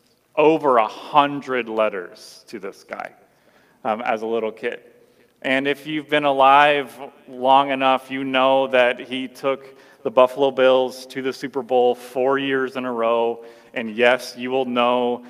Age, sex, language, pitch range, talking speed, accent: 30-49, male, English, 110-135 Hz, 160 wpm, American